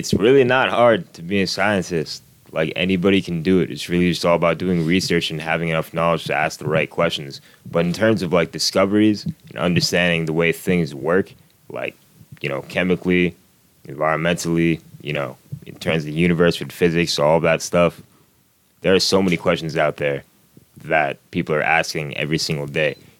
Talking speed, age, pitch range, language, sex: 185 wpm, 20-39, 80-95 Hz, English, male